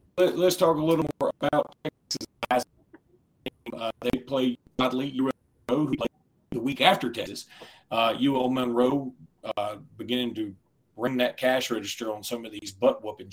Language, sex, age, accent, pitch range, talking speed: English, male, 40-59, American, 120-155 Hz, 135 wpm